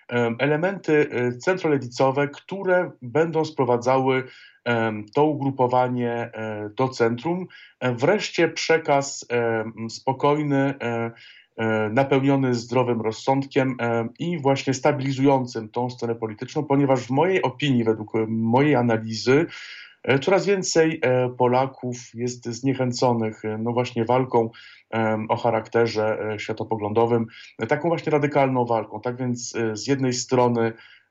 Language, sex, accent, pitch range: Polish, male, native, 115-140 Hz